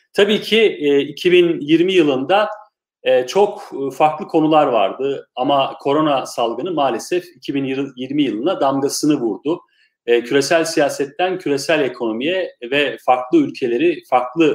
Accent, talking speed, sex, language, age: native, 100 wpm, male, Turkish, 40-59